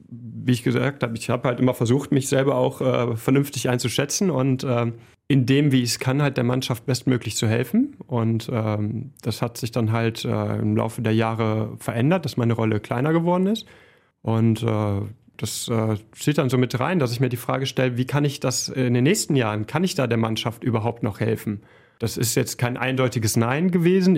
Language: German